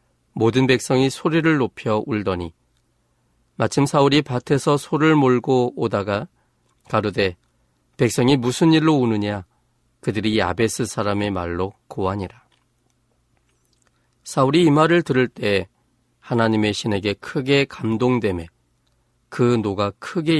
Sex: male